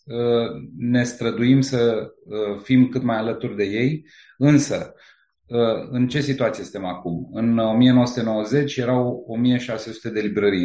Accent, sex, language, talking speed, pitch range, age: native, male, Romanian, 120 wpm, 110-135 Hz, 30-49